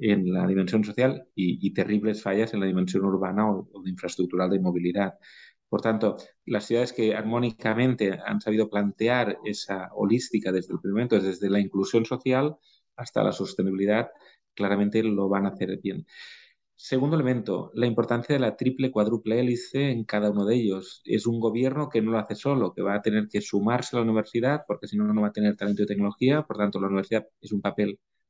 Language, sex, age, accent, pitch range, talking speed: Spanish, male, 30-49, Spanish, 100-120 Hz, 195 wpm